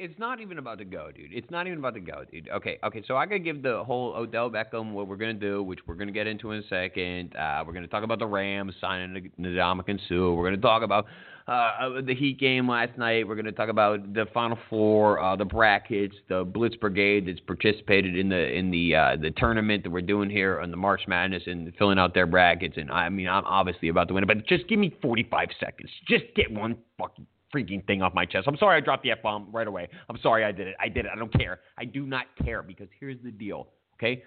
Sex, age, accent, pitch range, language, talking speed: male, 30-49, American, 100-165 Hz, English, 255 wpm